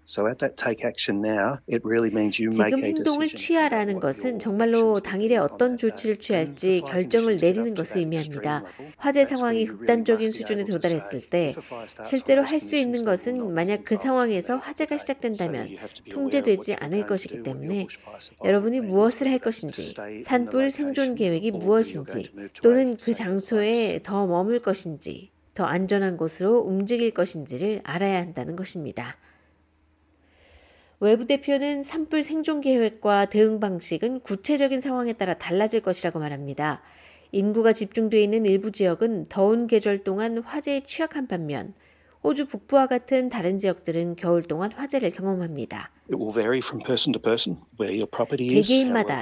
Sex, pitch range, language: female, 175-240 Hz, Korean